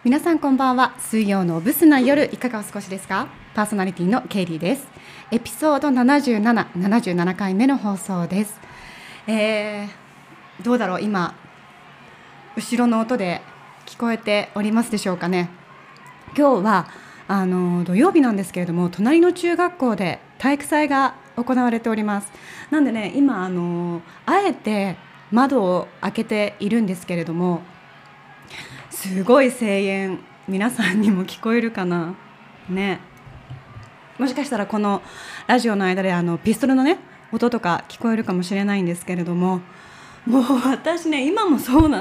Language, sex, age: Japanese, female, 20-39